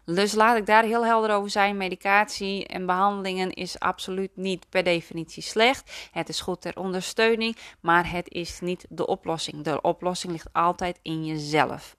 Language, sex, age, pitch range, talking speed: Dutch, female, 20-39, 165-195 Hz, 170 wpm